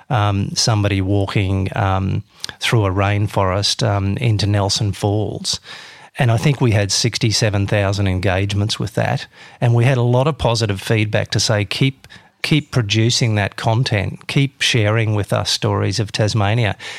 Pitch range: 100-120 Hz